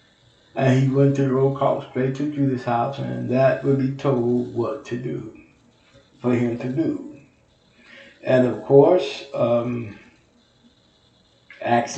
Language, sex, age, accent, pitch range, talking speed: English, male, 60-79, American, 120-140 Hz, 140 wpm